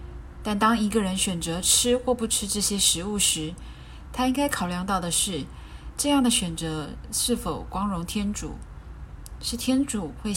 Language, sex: Chinese, female